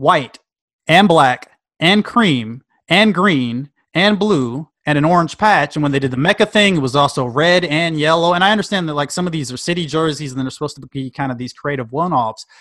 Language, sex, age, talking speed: English, male, 30-49, 225 wpm